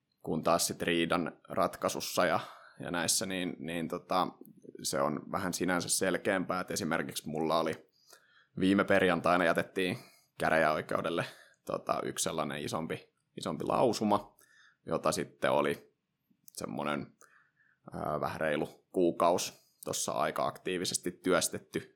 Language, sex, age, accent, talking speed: Finnish, male, 20-39, native, 110 wpm